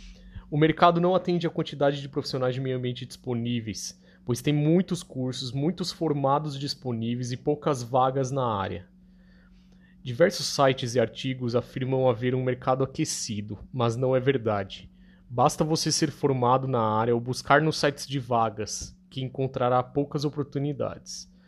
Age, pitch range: 20-39, 125-155 Hz